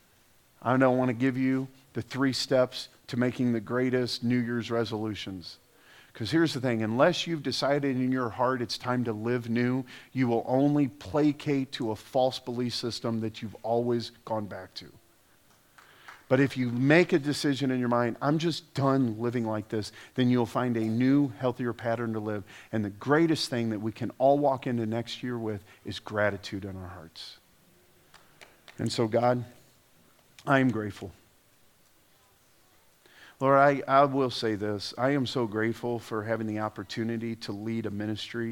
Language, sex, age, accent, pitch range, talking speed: English, male, 40-59, American, 110-130 Hz, 175 wpm